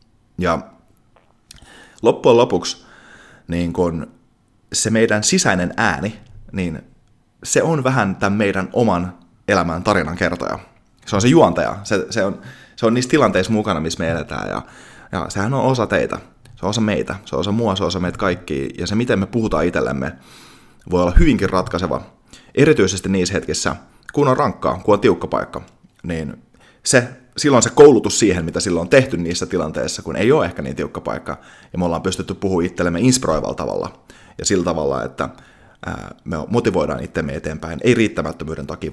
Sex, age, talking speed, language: male, 30-49, 170 wpm, Finnish